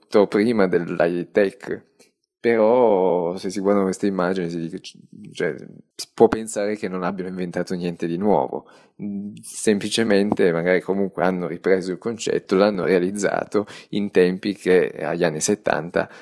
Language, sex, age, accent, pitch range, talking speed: Italian, male, 20-39, native, 85-105 Hz, 135 wpm